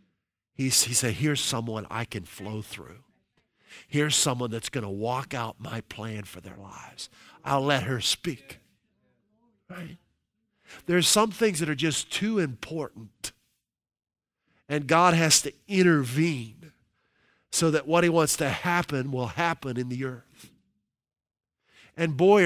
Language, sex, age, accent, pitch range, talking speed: English, male, 50-69, American, 125-175 Hz, 140 wpm